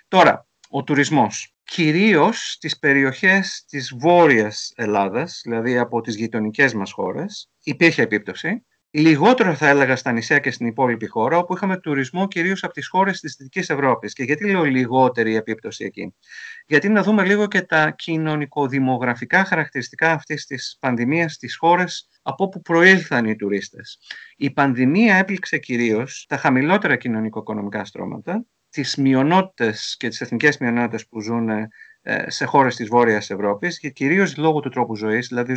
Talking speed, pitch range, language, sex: 150 wpm, 120-165 Hz, Greek, male